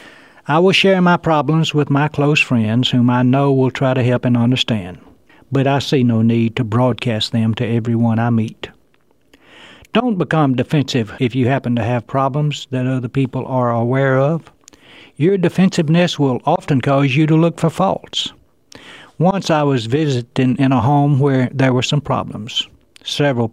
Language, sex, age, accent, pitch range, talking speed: English, male, 60-79, American, 125-160 Hz, 175 wpm